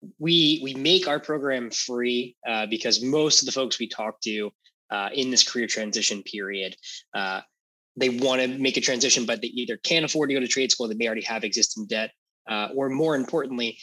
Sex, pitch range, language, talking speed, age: male, 110-140 Hz, English, 210 wpm, 20-39